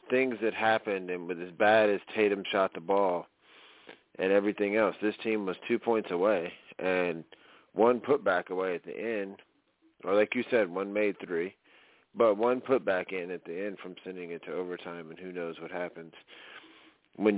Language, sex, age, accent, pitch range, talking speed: English, male, 30-49, American, 95-110 Hz, 190 wpm